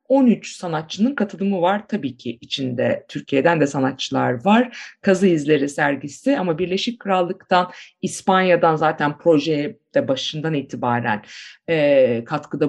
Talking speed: 115 wpm